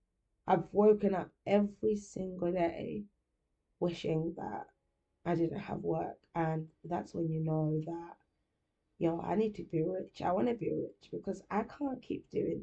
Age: 20-39